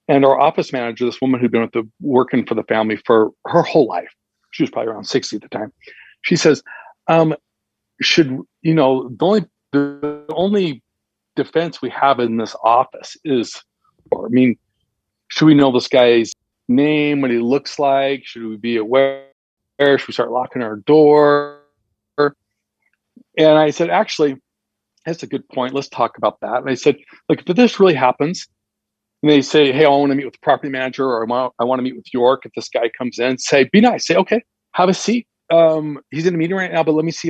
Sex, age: male, 40-59